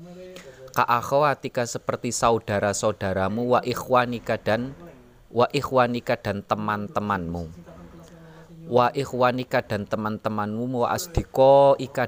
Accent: native